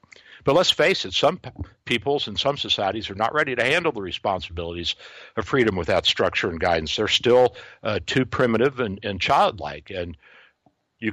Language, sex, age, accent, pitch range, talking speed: English, male, 60-79, American, 95-120 Hz, 175 wpm